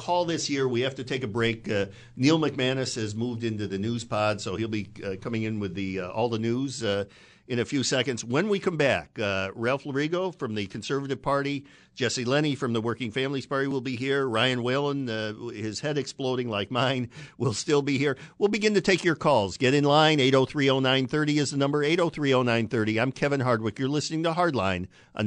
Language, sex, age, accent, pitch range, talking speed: English, male, 50-69, American, 105-140 Hz, 215 wpm